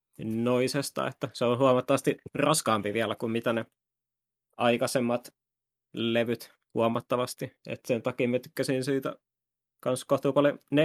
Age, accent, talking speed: 20-39, native, 120 wpm